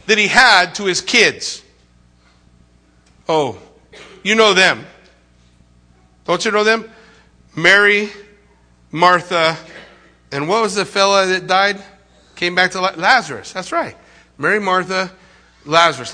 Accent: American